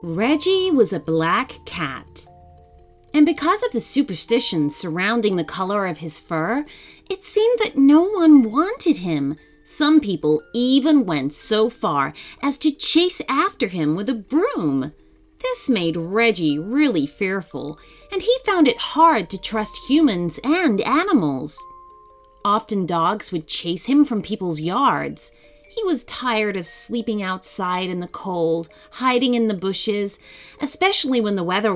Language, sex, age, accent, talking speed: English, female, 30-49, American, 145 wpm